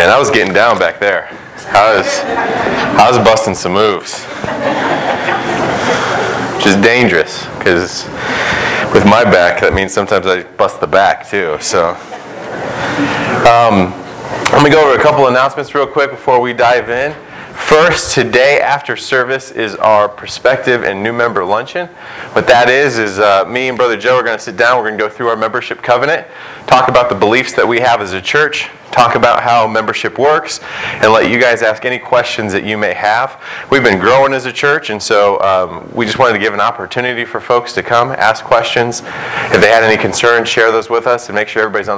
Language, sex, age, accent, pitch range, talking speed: English, male, 20-39, American, 110-135 Hz, 200 wpm